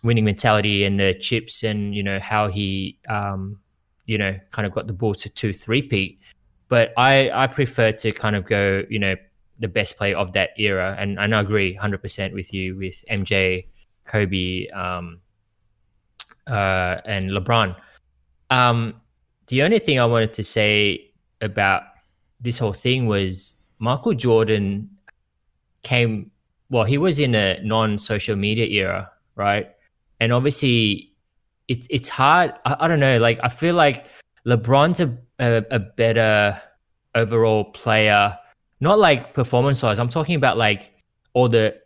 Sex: male